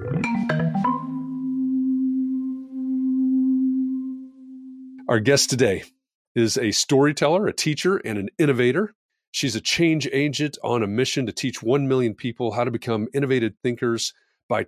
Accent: American